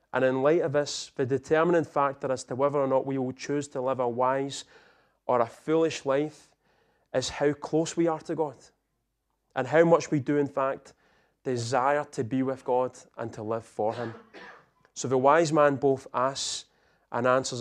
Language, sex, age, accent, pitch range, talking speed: English, male, 30-49, British, 120-145 Hz, 190 wpm